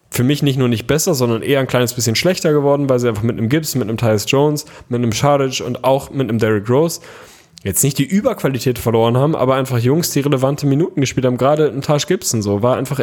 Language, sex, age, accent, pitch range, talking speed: German, male, 10-29, German, 120-145 Hz, 245 wpm